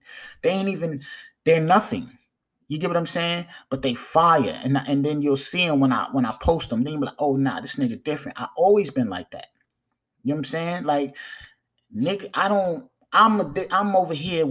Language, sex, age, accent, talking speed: English, male, 20-39, American, 230 wpm